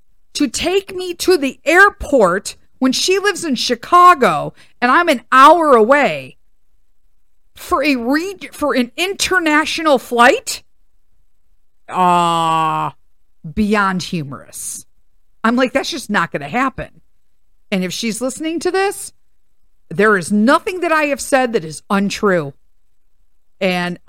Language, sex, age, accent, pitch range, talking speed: English, female, 50-69, American, 185-295 Hz, 130 wpm